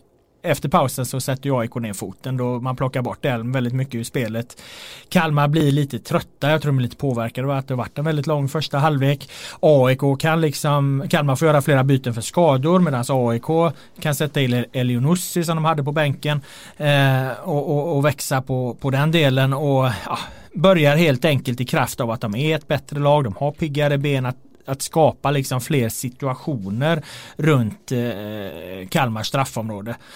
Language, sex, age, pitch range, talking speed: Swedish, male, 30-49, 125-155 Hz, 175 wpm